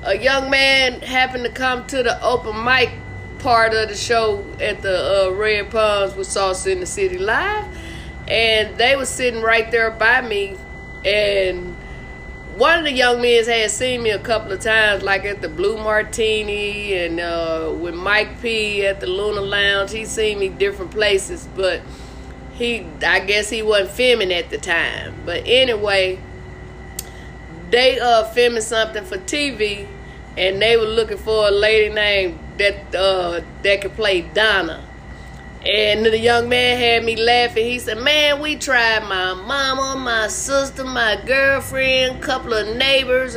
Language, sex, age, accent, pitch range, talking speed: English, female, 20-39, American, 205-255 Hz, 165 wpm